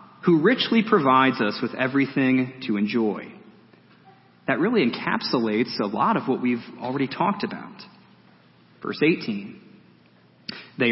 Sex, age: male, 30-49